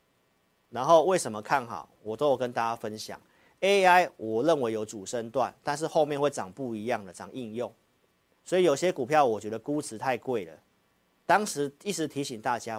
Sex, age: male, 40-59